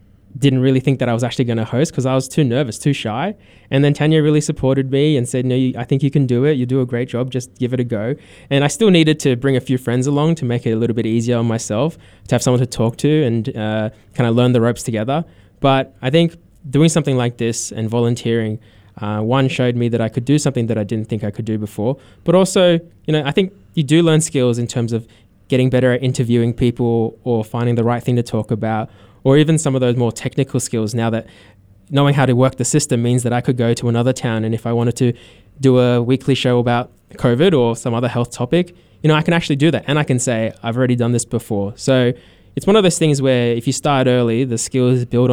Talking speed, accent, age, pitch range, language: 260 wpm, Australian, 20-39, 115-135 Hz, English